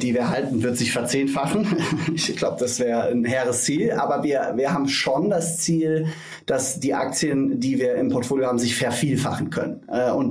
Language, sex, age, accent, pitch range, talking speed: German, male, 30-49, German, 125-165 Hz, 185 wpm